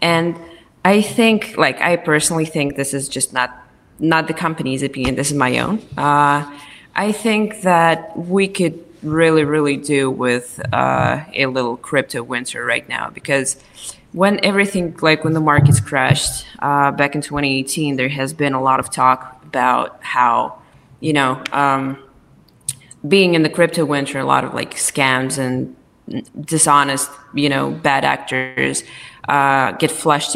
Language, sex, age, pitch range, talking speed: English, female, 20-39, 130-155 Hz, 155 wpm